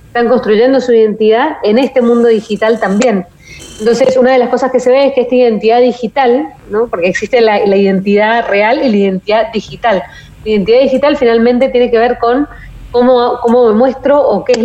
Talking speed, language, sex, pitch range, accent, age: 195 wpm, Spanish, female, 200-245 Hz, Argentinian, 20-39